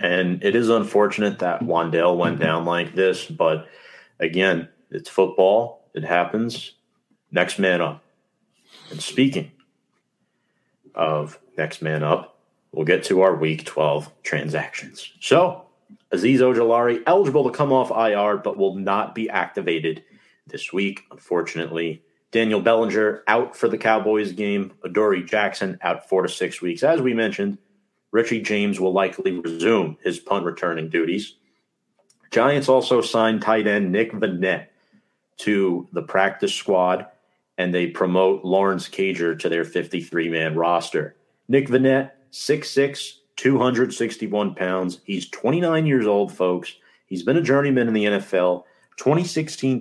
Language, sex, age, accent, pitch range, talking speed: English, male, 30-49, American, 90-130 Hz, 135 wpm